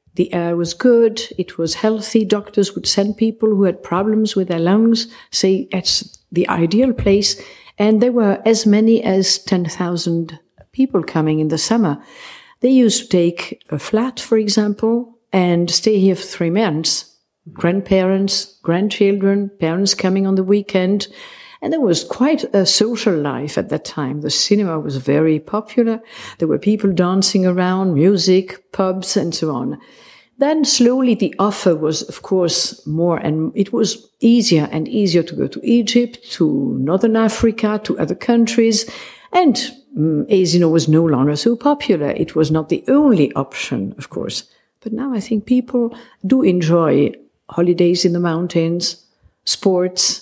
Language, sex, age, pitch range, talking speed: English, female, 50-69, 170-225 Hz, 160 wpm